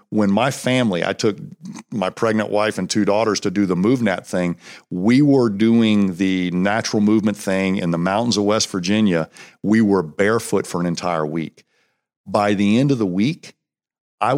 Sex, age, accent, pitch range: male, 50-69, American, 105-140 Hz